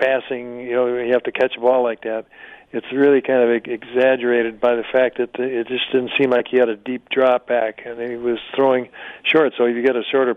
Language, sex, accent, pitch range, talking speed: English, male, American, 120-135 Hz, 245 wpm